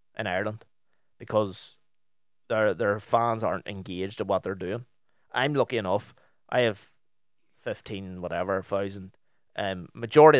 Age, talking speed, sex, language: 20-39, 125 wpm, male, English